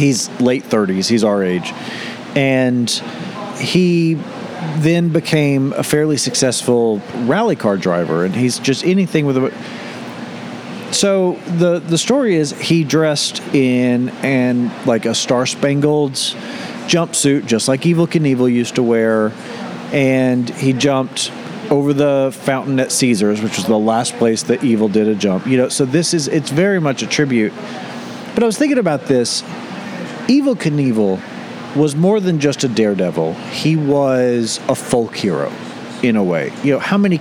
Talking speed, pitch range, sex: 160 wpm, 120-170 Hz, male